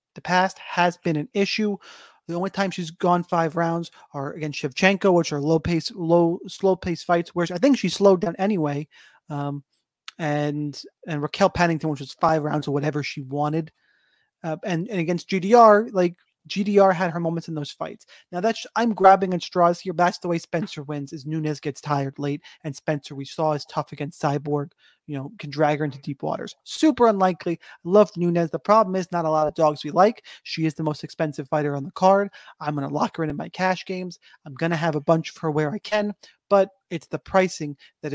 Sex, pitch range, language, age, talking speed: male, 150-185 Hz, English, 30-49, 220 wpm